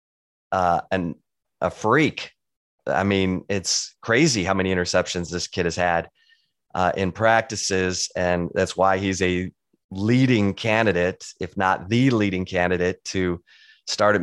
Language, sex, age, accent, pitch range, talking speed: English, male, 30-49, American, 95-110 Hz, 140 wpm